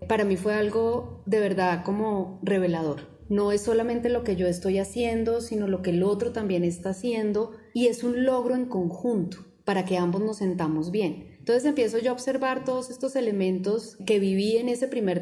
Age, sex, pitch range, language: 30-49, female, 190-230 Hz, Spanish